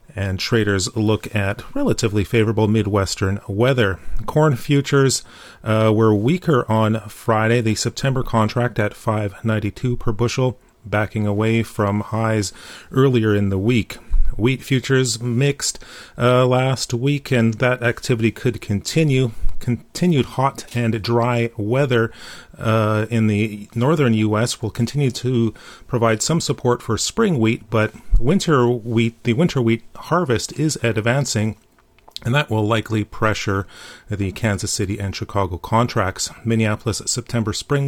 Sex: male